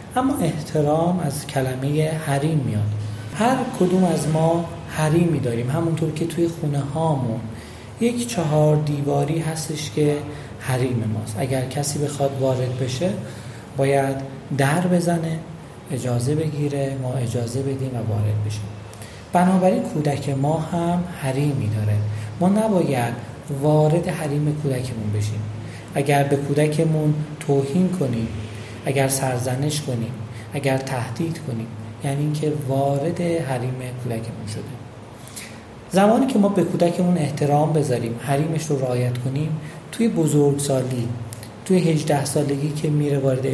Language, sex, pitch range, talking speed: Persian, male, 125-160 Hz, 125 wpm